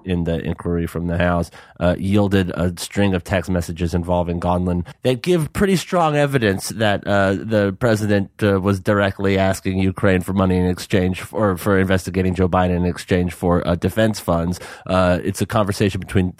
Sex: male